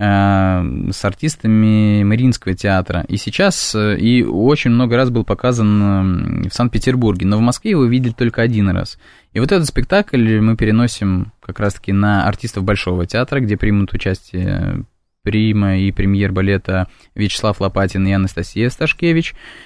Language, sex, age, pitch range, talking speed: Russian, male, 20-39, 100-120 Hz, 135 wpm